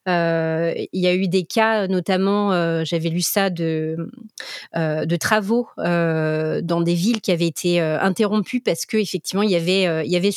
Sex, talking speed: female, 185 wpm